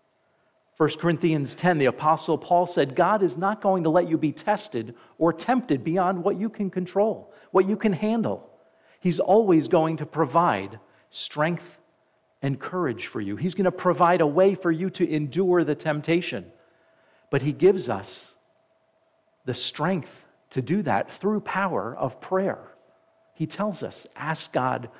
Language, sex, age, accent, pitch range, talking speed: English, male, 50-69, American, 135-180 Hz, 160 wpm